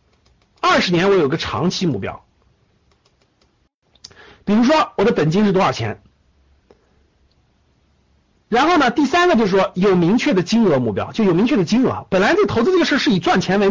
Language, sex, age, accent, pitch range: Chinese, male, 50-69, native, 145-235 Hz